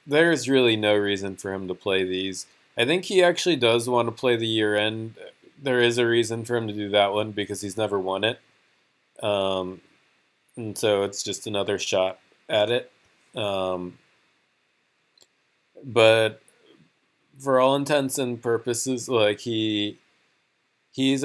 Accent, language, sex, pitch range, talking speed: American, English, male, 100-120 Hz, 150 wpm